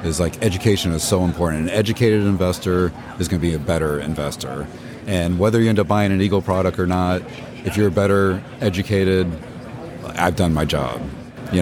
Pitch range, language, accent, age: 85-100 Hz, English, American, 30-49